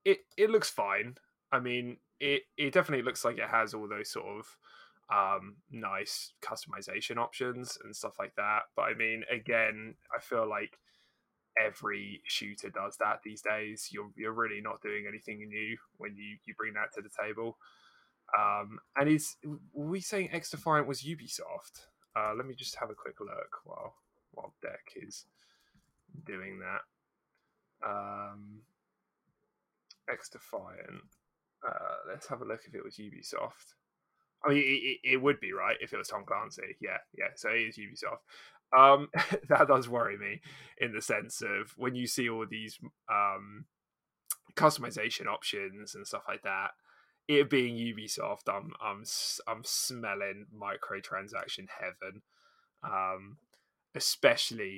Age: 10-29